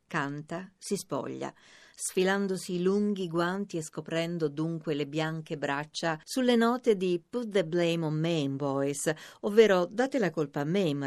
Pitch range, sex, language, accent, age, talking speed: 155-200 Hz, female, Italian, native, 50-69, 150 wpm